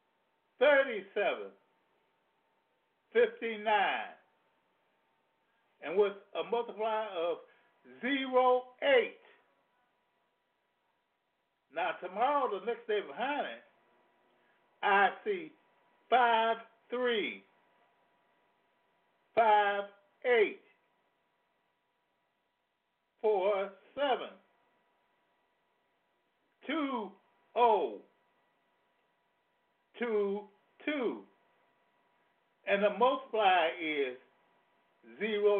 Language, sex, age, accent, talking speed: English, male, 60-79, American, 55 wpm